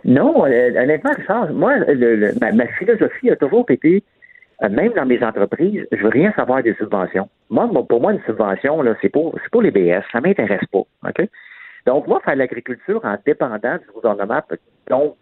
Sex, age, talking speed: male, 50-69, 190 wpm